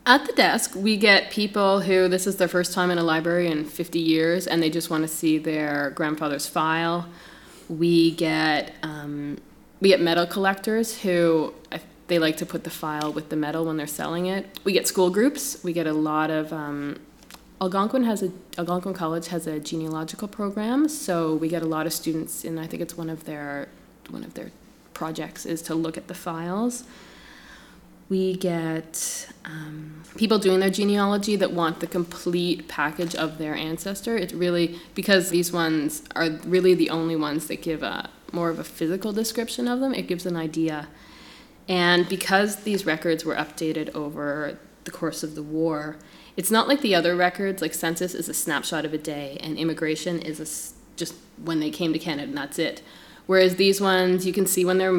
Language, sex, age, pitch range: English, female, 20-39, 155-185 Hz